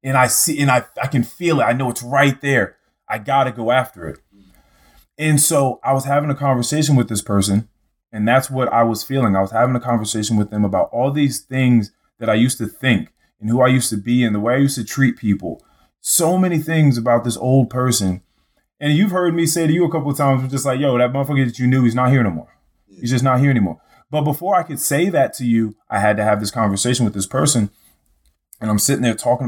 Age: 20-39